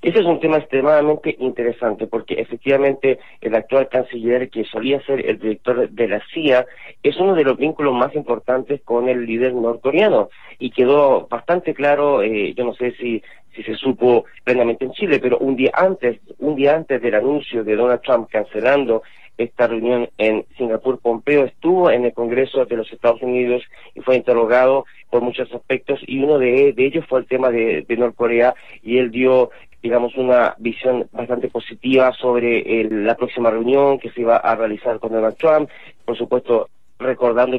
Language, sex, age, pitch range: Spanish, male, 40-59, 120-140 Hz